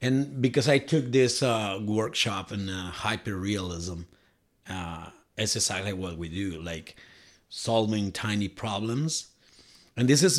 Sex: male